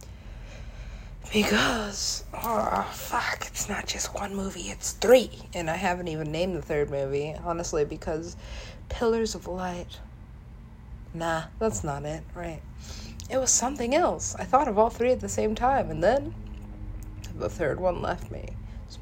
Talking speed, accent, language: 155 wpm, American, English